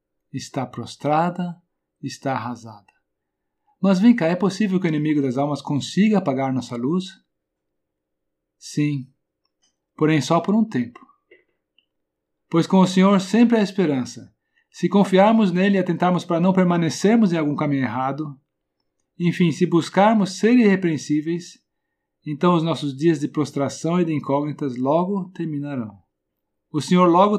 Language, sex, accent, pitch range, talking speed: Portuguese, male, Brazilian, 120-180 Hz, 135 wpm